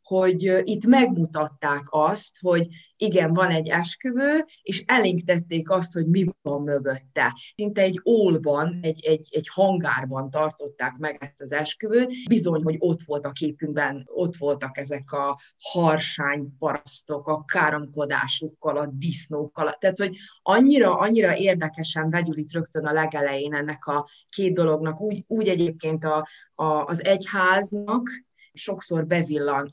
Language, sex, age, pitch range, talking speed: Hungarian, female, 20-39, 150-185 Hz, 135 wpm